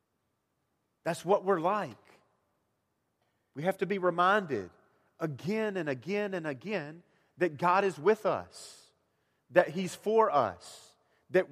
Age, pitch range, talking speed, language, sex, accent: 40-59, 165-210 Hz, 125 wpm, English, male, American